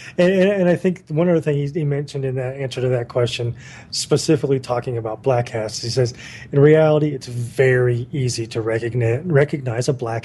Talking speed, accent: 180 wpm, American